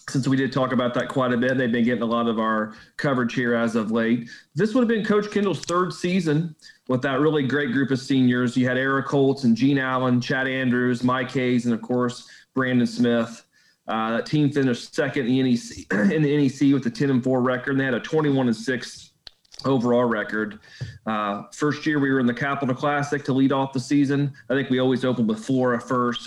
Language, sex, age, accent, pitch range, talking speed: English, male, 40-59, American, 115-135 Hz, 230 wpm